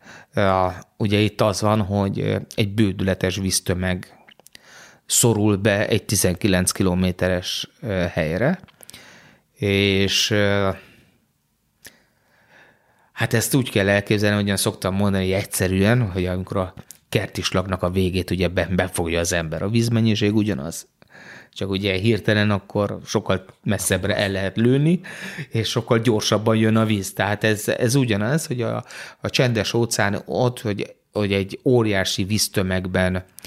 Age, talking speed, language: 30-49, 120 wpm, Hungarian